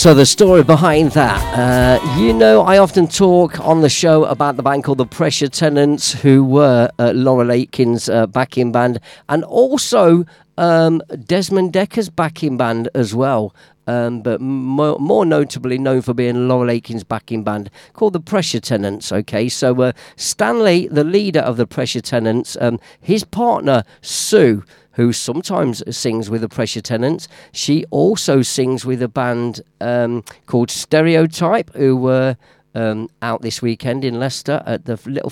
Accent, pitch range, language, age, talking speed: British, 115-160 Hz, English, 50-69, 160 wpm